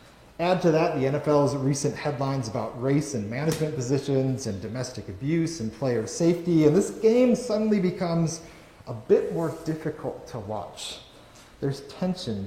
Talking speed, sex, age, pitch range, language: 150 wpm, male, 30-49, 120-160 Hz, English